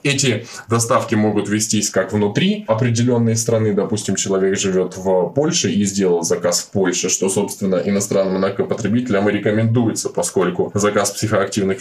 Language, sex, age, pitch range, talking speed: Russian, male, 20-39, 100-115 Hz, 135 wpm